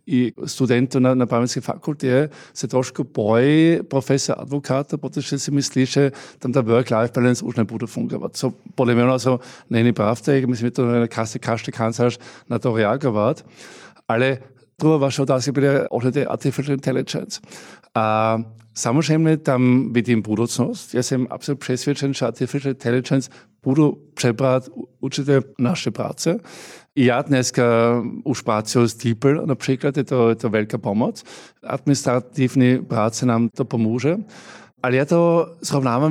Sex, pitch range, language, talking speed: male, 120-140 Hz, Czech, 105 wpm